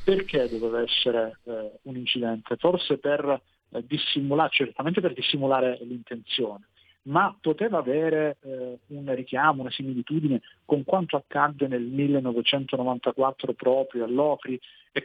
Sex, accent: male, native